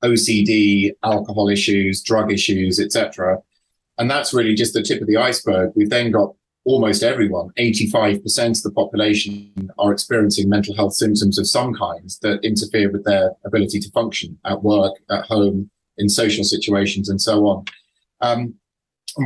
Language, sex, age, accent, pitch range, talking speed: English, male, 30-49, British, 100-115 Hz, 160 wpm